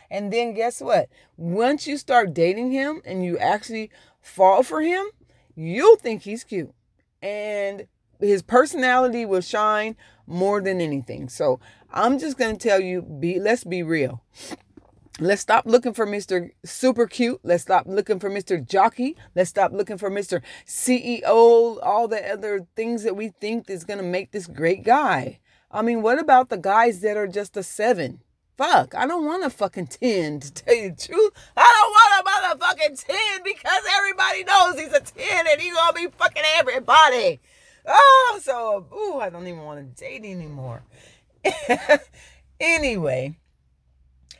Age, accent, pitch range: 30-49, American, 180-260 Hz